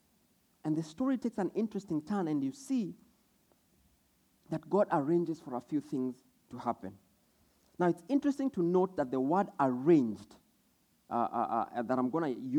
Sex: male